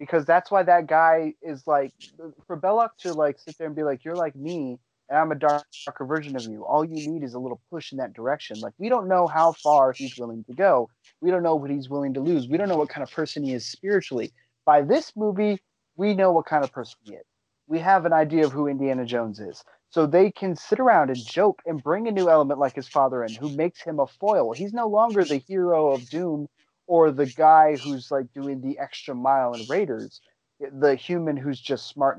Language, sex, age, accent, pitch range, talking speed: English, male, 30-49, American, 135-170 Hz, 240 wpm